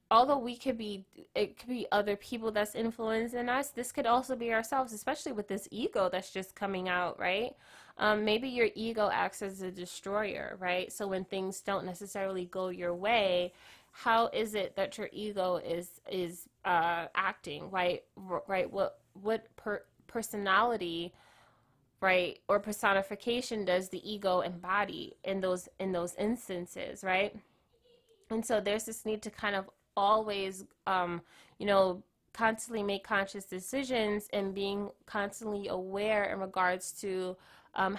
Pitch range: 185-215 Hz